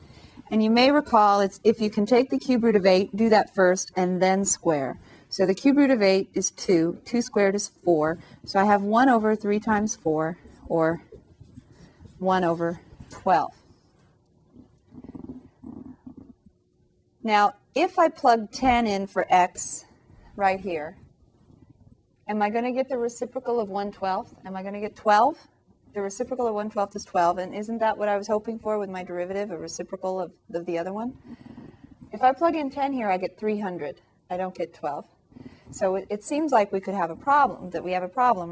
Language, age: English, 40-59